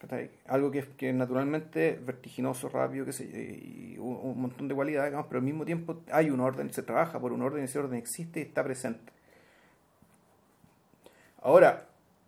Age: 40-59